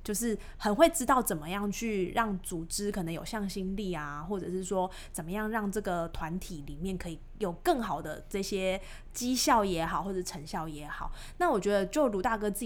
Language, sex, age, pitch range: Chinese, female, 20-39, 180-225 Hz